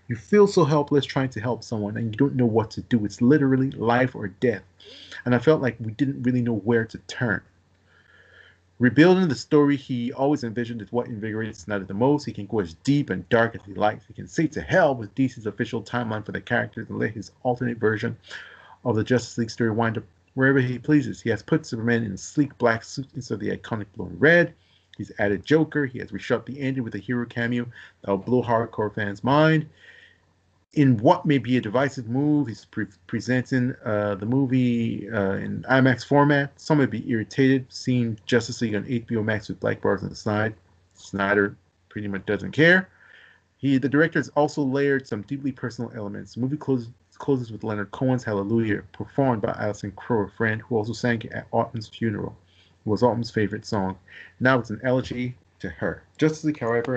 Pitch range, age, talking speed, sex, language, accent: 105-130 Hz, 40-59, 205 wpm, male, English, American